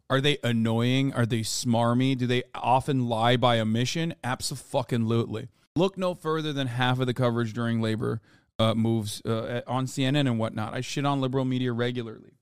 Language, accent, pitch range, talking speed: English, American, 125-165 Hz, 175 wpm